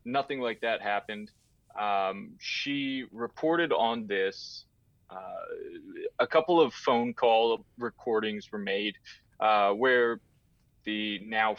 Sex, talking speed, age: male, 115 wpm, 30-49